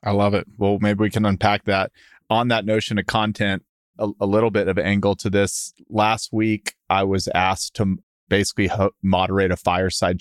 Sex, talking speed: male, 190 wpm